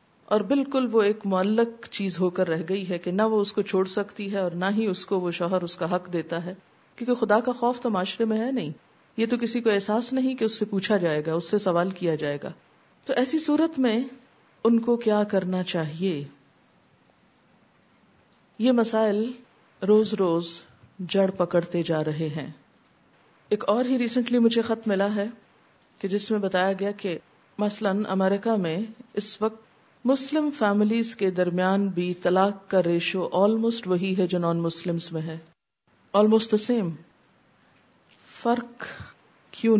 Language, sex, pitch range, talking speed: Urdu, female, 180-230 Hz, 175 wpm